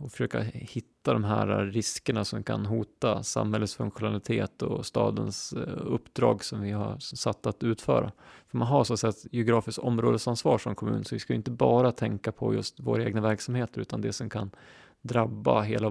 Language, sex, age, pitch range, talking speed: English, male, 20-39, 105-120 Hz, 180 wpm